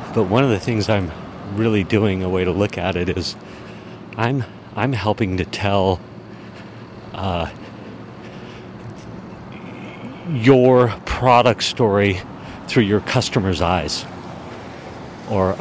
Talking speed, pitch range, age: 105 wpm, 90-115 Hz, 50-69